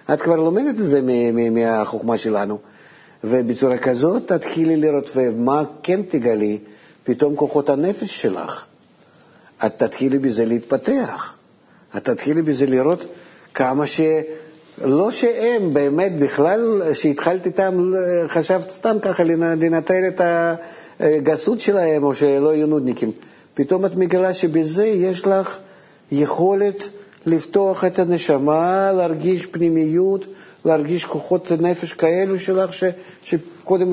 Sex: male